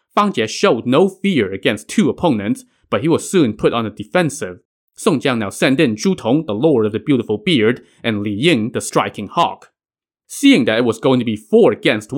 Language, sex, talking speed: English, male, 215 wpm